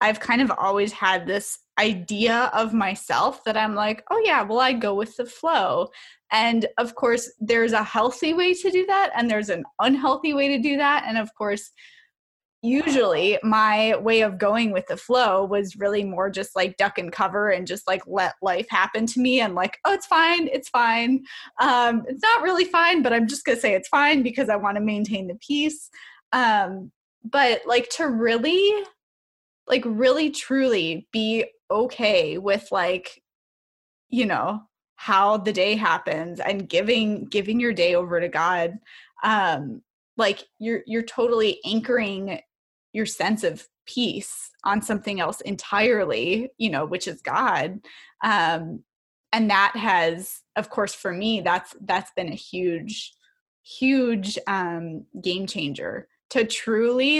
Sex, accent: female, American